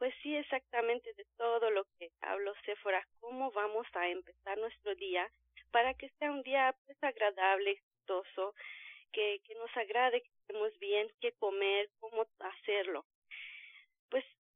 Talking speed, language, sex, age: 145 wpm, Spanish, female, 40-59